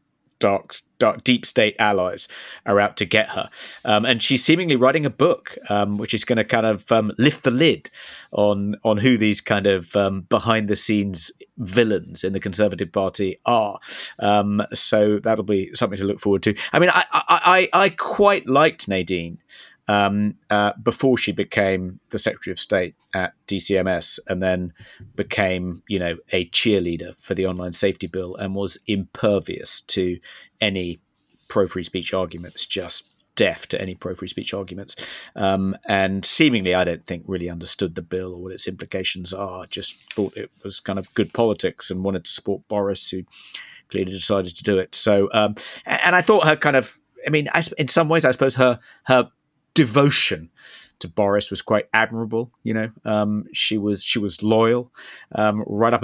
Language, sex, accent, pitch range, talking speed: English, male, British, 95-115 Hz, 180 wpm